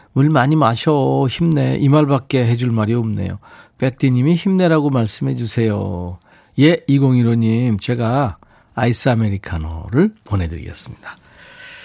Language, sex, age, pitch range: Korean, male, 50-69, 110-150 Hz